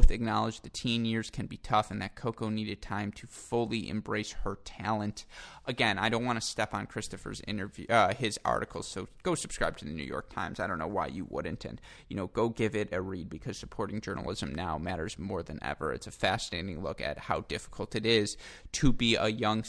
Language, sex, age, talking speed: English, male, 20-39, 220 wpm